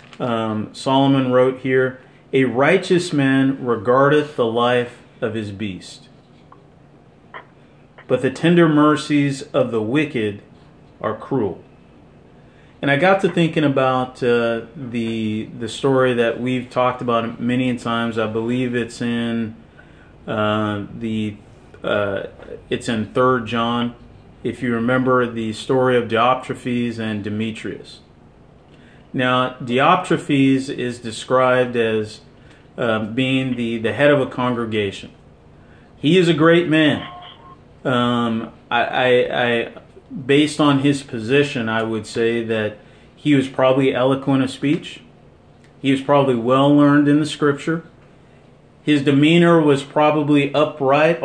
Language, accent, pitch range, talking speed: English, American, 115-145 Hz, 125 wpm